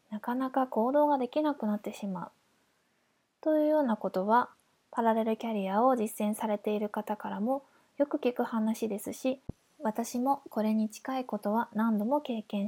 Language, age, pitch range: Japanese, 20-39, 215-270 Hz